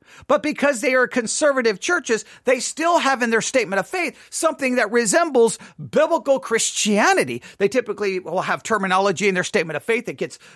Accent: American